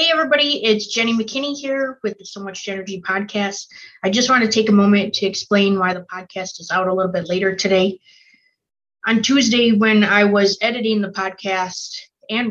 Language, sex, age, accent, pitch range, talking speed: English, female, 20-39, American, 185-210 Hz, 190 wpm